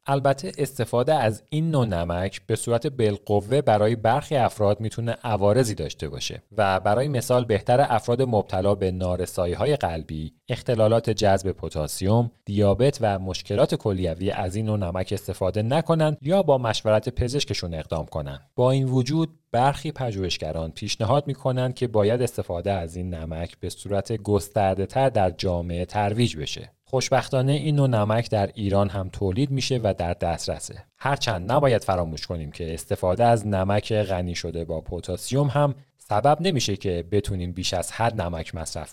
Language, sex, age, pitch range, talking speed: Persian, male, 30-49, 90-125 Hz, 155 wpm